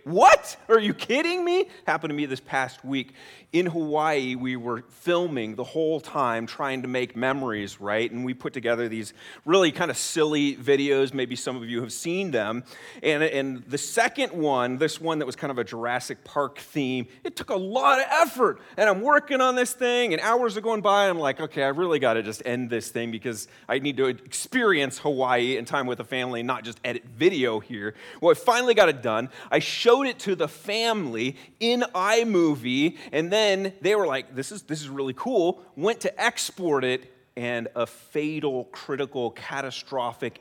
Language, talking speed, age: English, 200 wpm, 30-49